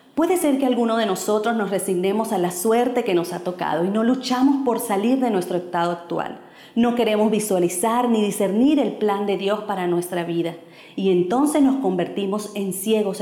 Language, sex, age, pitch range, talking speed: Spanish, female, 40-59, 185-245 Hz, 190 wpm